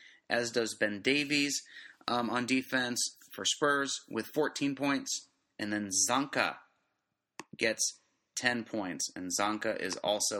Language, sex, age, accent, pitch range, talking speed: English, male, 30-49, American, 105-140 Hz, 125 wpm